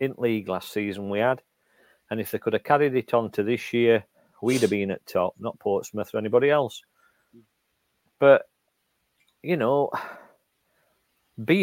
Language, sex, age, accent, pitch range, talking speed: English, male, 40-59, British, 105-140 Hz, 160 wpm